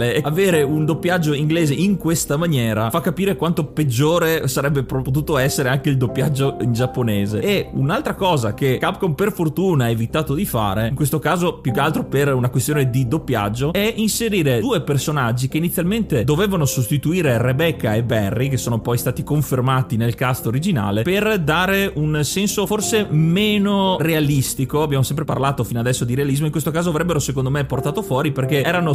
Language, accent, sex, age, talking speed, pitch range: Italian, native, male, 30-49, 175 wpm, 130-165 Hz